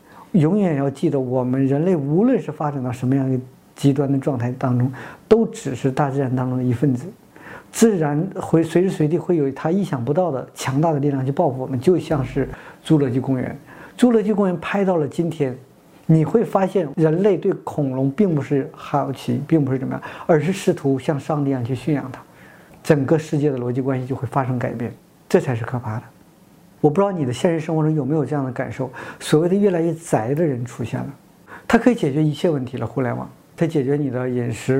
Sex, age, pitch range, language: male, 50-69, 130-175 Hz, Chinese